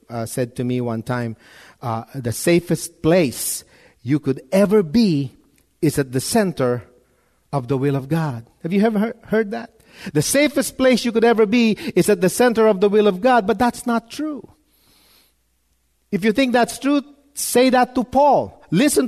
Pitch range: 165-240 Hz